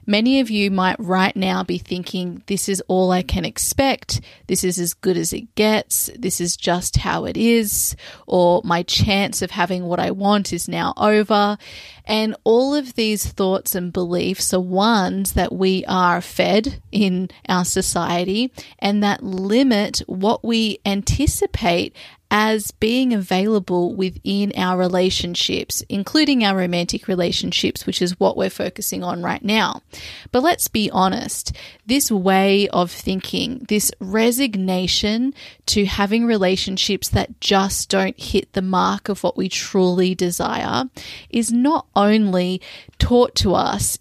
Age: 30-49